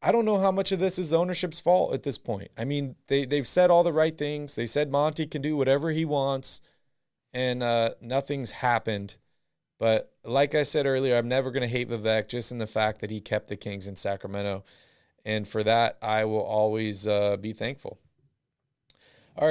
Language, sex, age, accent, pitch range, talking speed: English, male, 30-49, American, 115-140 Hz, 205 wpm